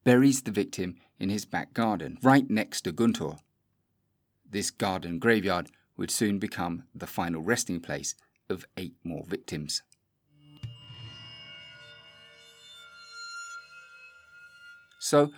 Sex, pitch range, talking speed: male, 85-130 Hz, 100 wpm